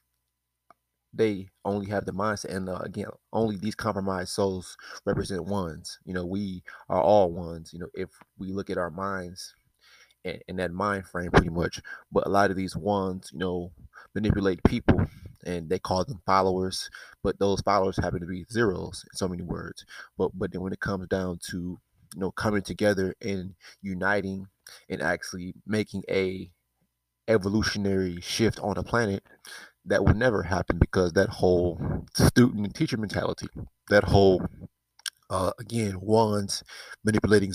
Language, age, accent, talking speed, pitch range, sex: English, 20-39, American, 160 wpm, 90-105 Hz, male